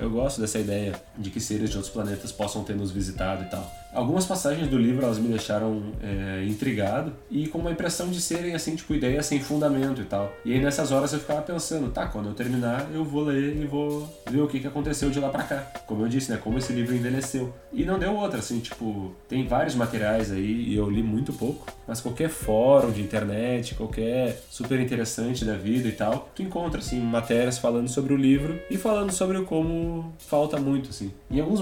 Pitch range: 110-145 Hz